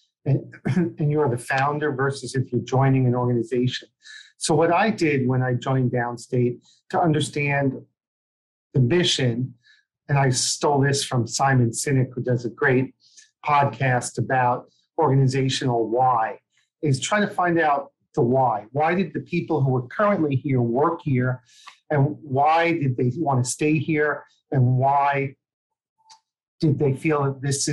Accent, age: American, 40-59